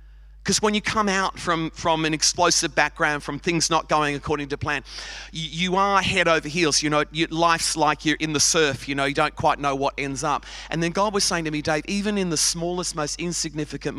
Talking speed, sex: 230 wpm, male